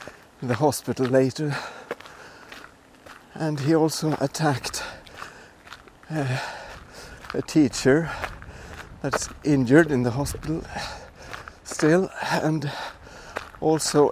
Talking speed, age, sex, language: 75 wpm, 60-79, male, English